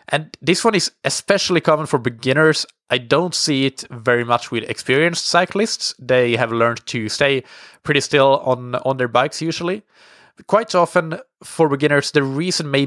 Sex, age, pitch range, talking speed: male, 20-39, 120-155 Hz, 170 wpm